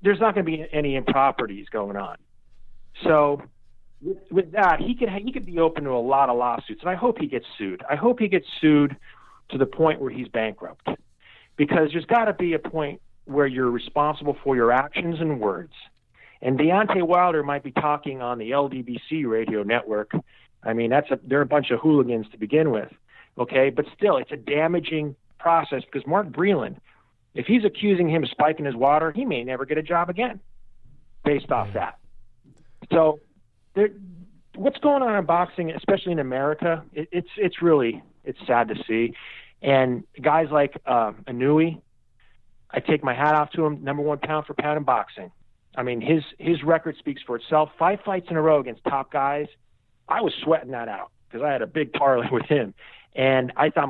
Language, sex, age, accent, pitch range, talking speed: English, male, 40-59, American, 125-165 Hz, 195 wpm